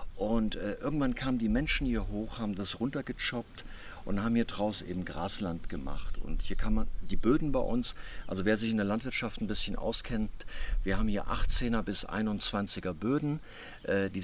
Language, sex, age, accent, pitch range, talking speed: German, male, 50-69, German, 95-125 Hz, 185 wpm